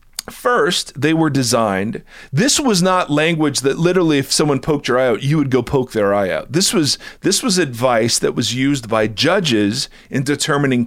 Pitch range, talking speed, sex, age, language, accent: 120-165 Hz, 195 wpm, male, 40-59, English, American